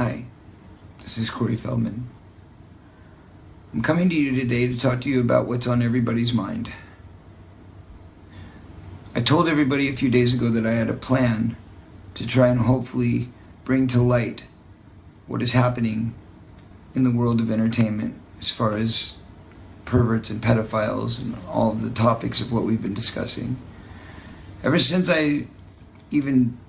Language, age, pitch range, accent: English, 50-69, 105-125 Hz, American